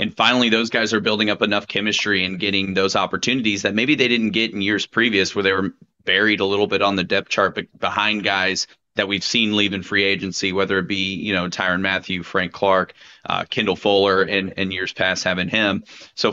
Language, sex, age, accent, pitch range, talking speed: English, male, 30-49, American, 95-110 Hz, 225 wpm